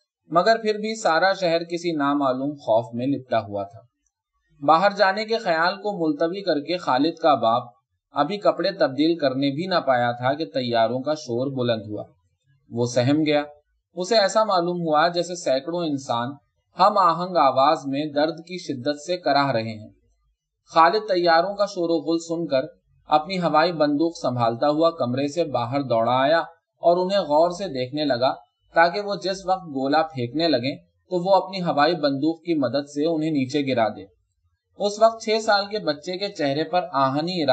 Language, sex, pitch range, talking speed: Urdu, male, 135-180 Hz, 160 wpm